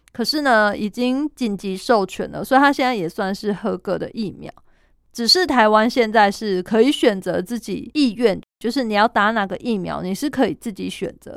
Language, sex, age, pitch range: Chinese, female, 20-39, 195-245 Hz